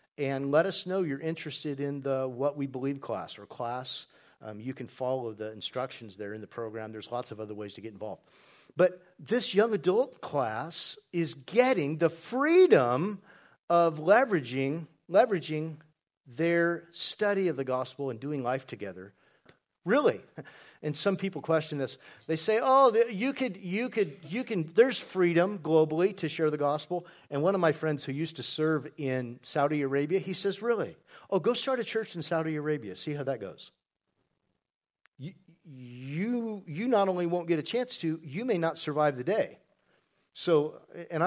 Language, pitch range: English, 135-185 Hz